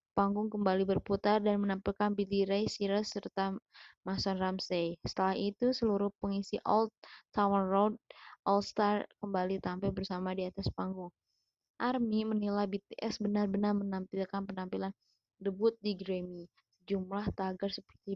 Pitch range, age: 185-205 Hz, 20-39